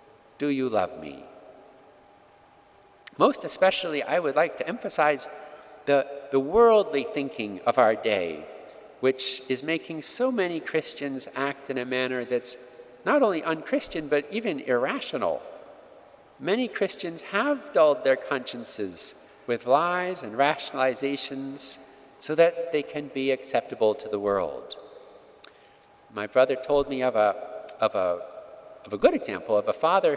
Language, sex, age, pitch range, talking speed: English, male, 50-69, 135-185 Hz, 135 wpm